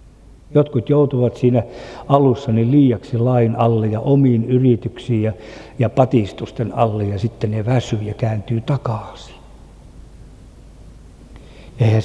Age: 60-79